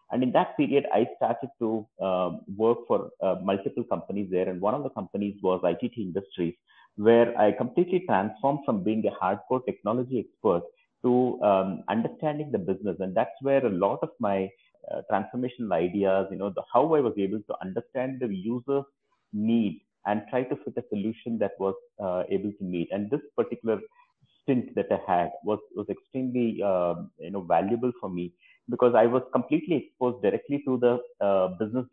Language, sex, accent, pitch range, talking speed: English, male, Indian, 95-120 Hz, 185 wpm